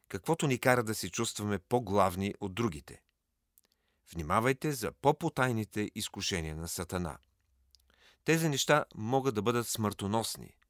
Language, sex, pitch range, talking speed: Bulgarian, male, 95-130 Hz, 120 wpm